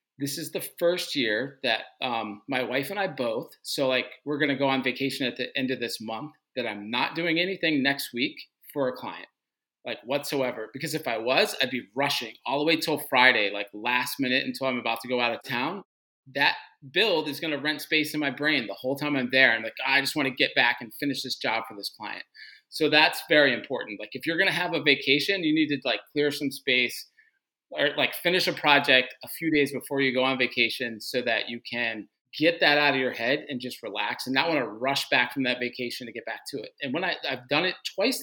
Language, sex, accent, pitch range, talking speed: English, male, American, 125-155 Hz, 245 wpm